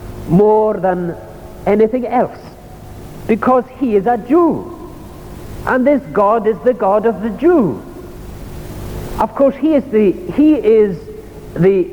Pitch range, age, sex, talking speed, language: 210-270 Hz, 60-79, male, 130 wpm, English